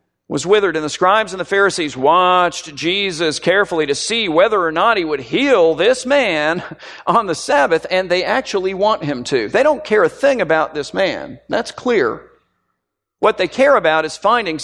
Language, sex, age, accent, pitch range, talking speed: English, male, 50-69, American, 150-205 Hz, 190 wpm